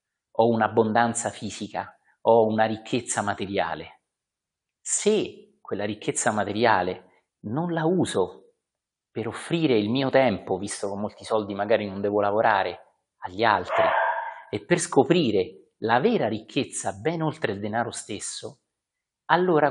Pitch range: 105-145 Hz